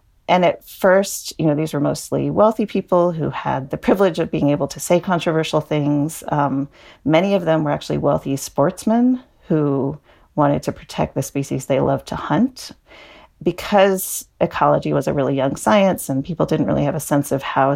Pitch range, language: 135-175 Hz, English